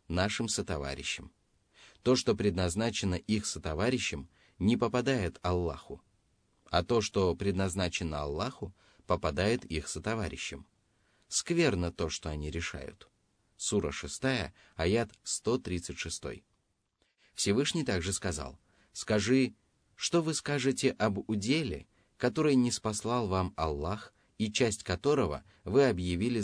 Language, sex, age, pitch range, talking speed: Russian, male, 30-49, 85-120 Hz, 105 wpm